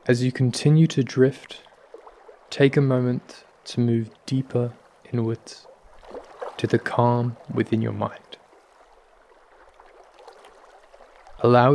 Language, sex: English, male